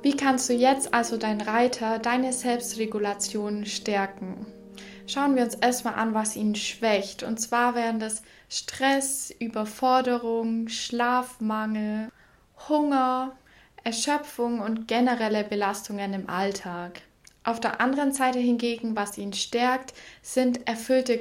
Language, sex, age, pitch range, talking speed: German, female, 10-29, 215-250 Hz, 120 wpm